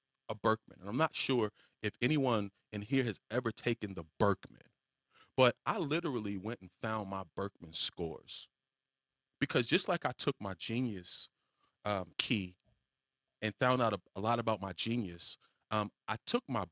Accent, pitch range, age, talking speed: American, 100-130 Hz, 30-49, 165 wpm